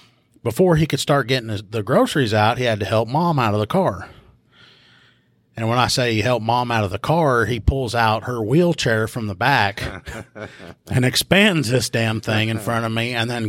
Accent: American